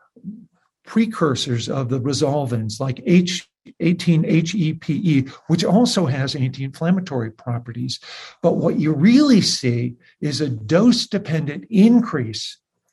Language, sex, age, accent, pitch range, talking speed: English, male, 50-69, American, 140-185 Hz, 95 wpm